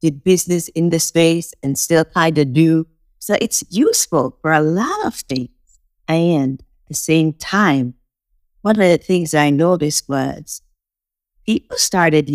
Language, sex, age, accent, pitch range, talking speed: English, female, 50-69, American, 135-165 Hz, 155 wpm